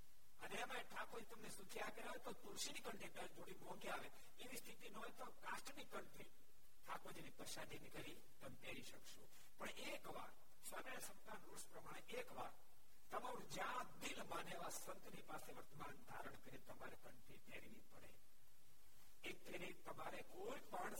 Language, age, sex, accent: Gujarati, 60-79, male, native